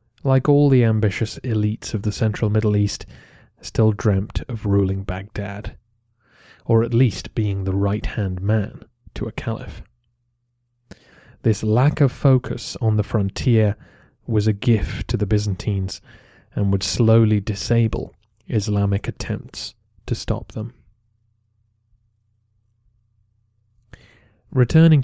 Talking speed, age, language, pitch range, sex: 115 wpm, 30-49, English, 105-120 Hz, male